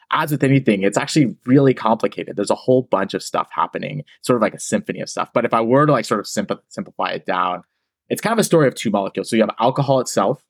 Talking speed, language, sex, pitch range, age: 255 wpm, English, male, 95-130 Hz, 30-49